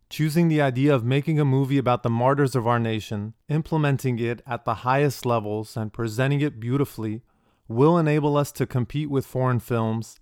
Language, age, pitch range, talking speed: English, 30-49, 115-135 Hz, 180 wpm